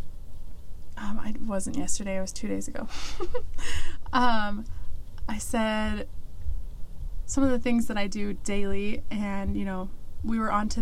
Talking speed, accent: 150 wpm, American